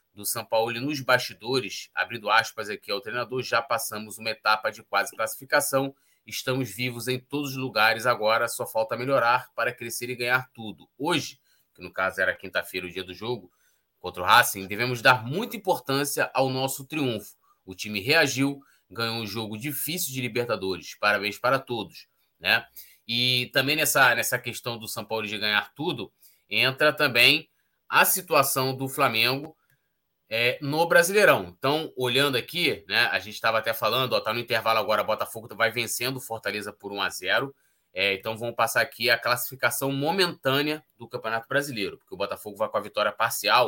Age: 20-39